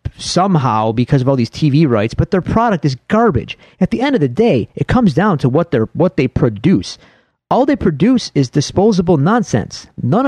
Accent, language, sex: American, English, male